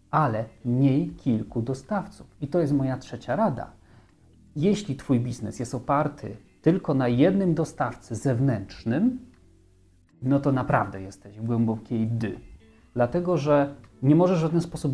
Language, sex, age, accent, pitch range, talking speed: Polish, male, 40-59, native, 120-150 Hz, 135 wpm